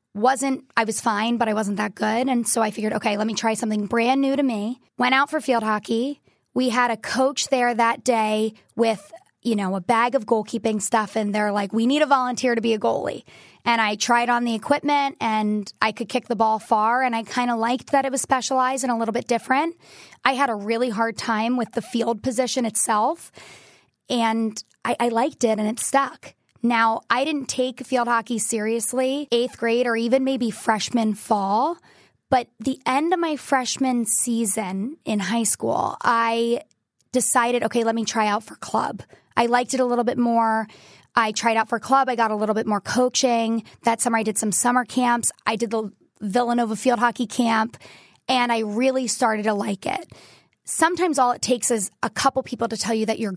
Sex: female